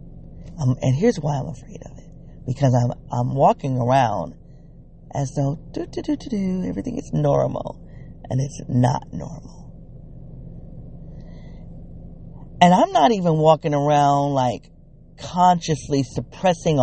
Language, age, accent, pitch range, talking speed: English, 40-59, American, 135-170 Hz, 130 wpm